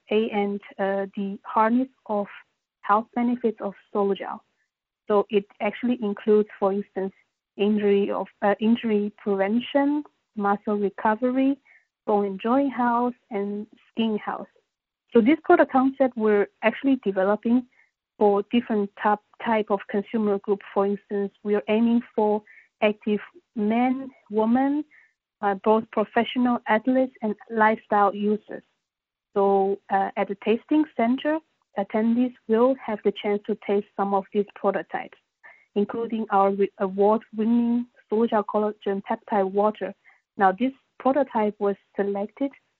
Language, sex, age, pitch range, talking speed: English, female, 30-49, 200-235 Hz, 125 wpm